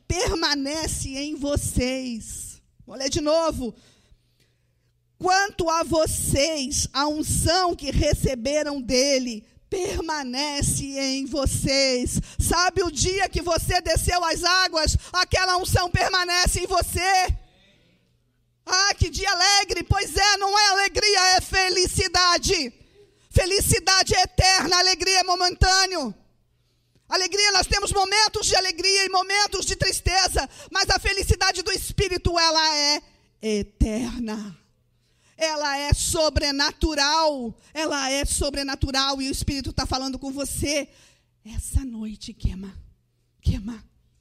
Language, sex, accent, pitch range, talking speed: Portuguese, female, Brazilian, 270-370 Hz, 110 wpm